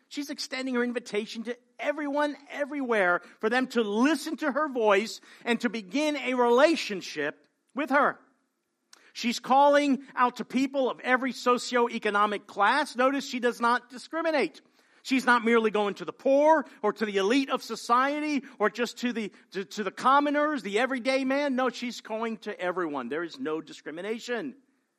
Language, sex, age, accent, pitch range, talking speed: English, male, 50-69, American, 215-275 Hz, 160 wpm